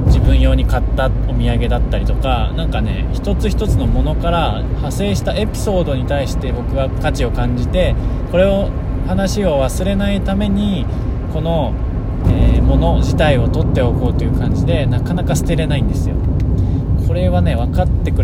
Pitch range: 100-125 Hz